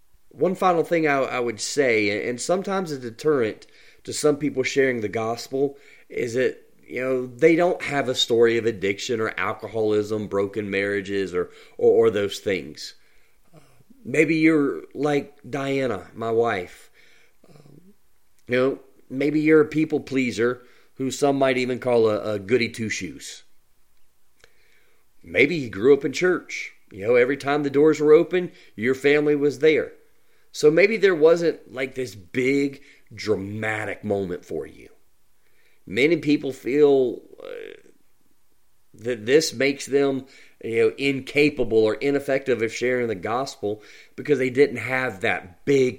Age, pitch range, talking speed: 30-49, 115-170 Hz, 145 wpm